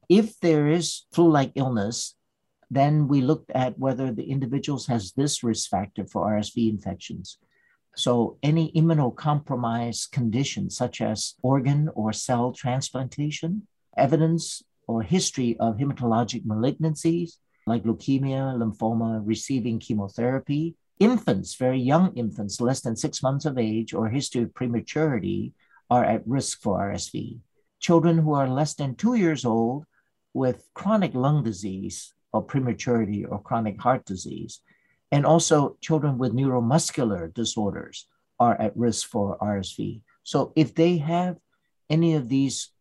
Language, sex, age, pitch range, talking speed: English, male, 60-79, 115-150 Hz, 135 wpm